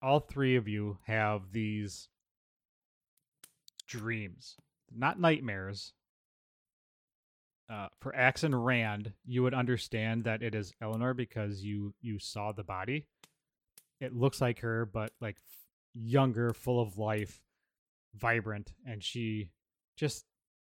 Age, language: 20-39, English